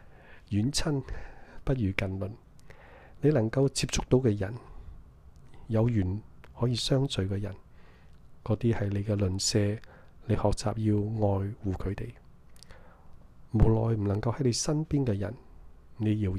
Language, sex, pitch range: Chinese, male, 95-120 Hz